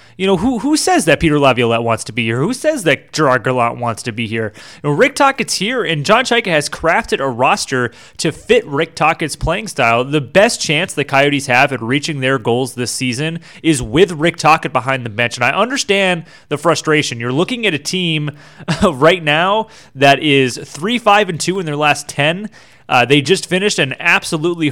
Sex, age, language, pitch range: male, 30-49, English, 130-170 Hz